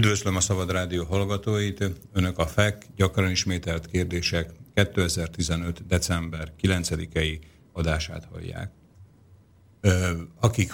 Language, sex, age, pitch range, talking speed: Slovak, male, 50-69, 85-95 Hz, 95 wpm